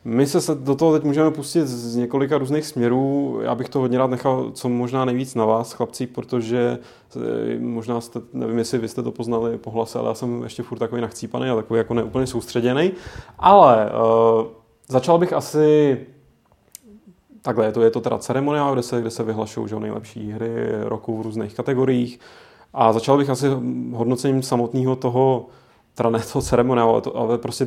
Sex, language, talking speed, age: male, Czech, 180 wpm, 20-39